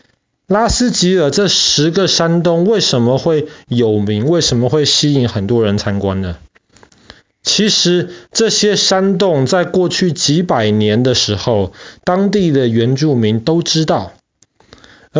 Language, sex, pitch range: Chinese, male, 115-160 Hz